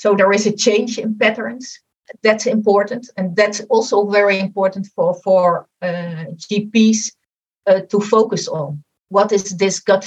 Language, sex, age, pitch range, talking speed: English, female, 50-69, 190-225 Hz, 155 wpm